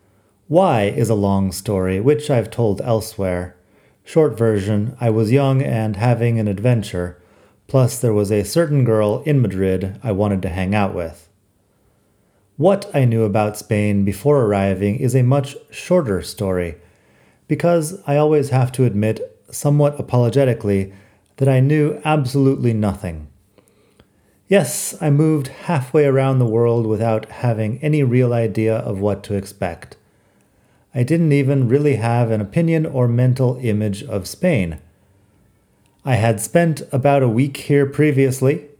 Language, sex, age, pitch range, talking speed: English, male, 30-49, 100-140 Hz, 145 wpm